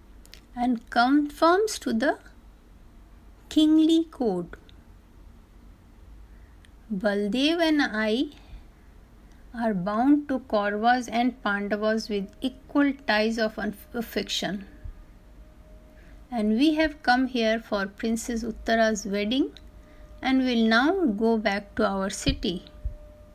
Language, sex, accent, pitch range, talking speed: Hindi, female, native, 170-245 Hz, 95 wpm